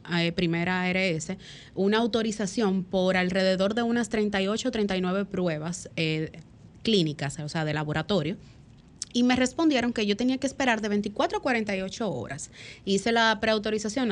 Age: 20-39